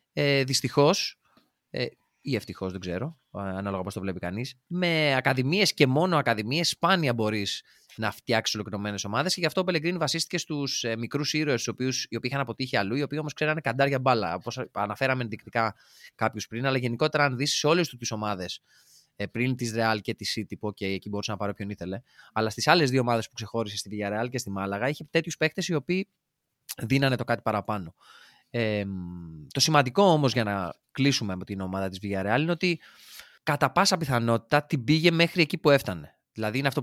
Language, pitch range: Greek, 100-140 Hz